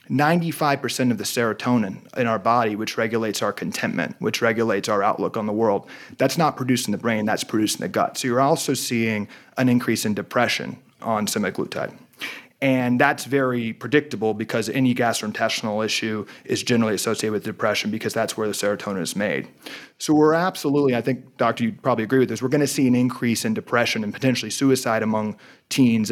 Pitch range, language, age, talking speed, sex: 115-135 Hz, English, 30-49, 185 wpm, male